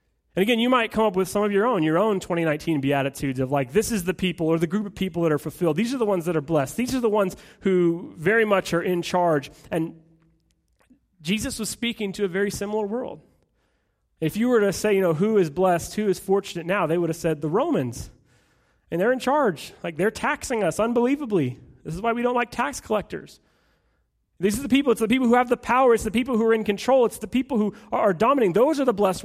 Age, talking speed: 30-49, 250 wpm